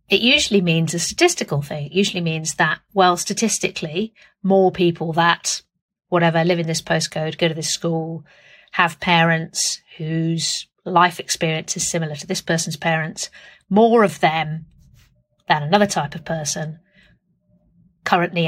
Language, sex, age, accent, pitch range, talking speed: English, female, 50-69, British, 165-210 Hz, 145 wpm